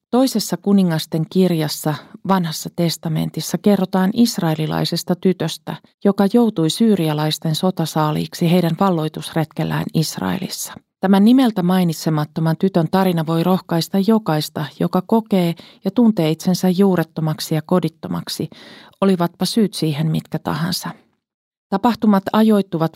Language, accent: Finnish, native